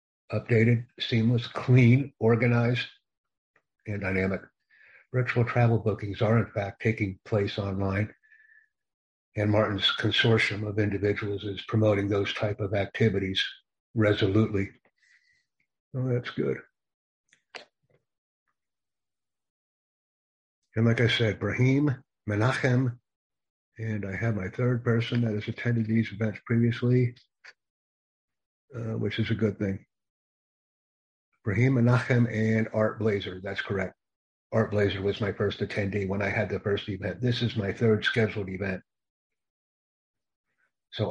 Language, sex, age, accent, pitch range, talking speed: English, male, 60-79, American, 100-115 Hz, 115 wpm